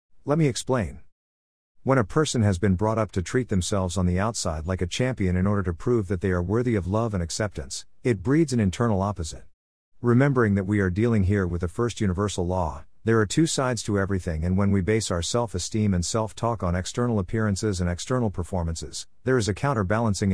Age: 50-69